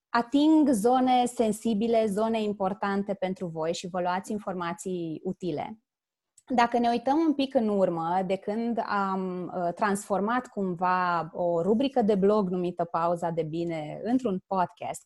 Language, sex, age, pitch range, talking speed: Romanian, female, 20-39, 185-270 Hz, 135 wpm